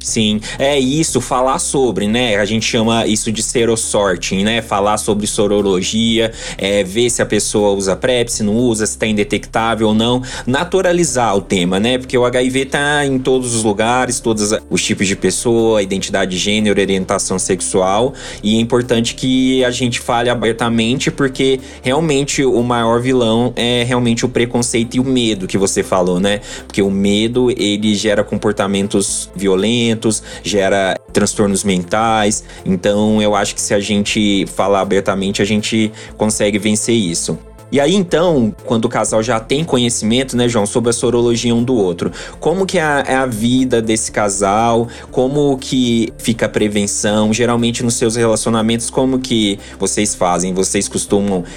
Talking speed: 160 wpm